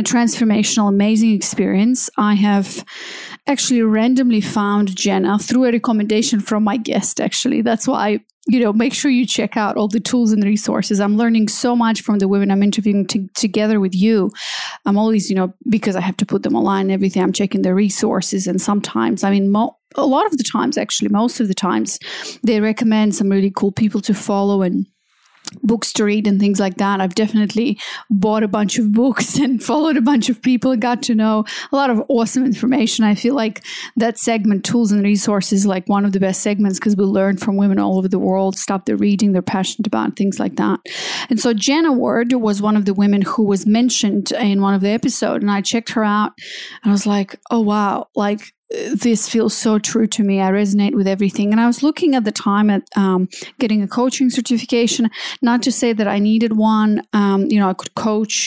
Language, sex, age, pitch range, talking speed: English, female, 30-49, 200-235 Hz, 220 wpm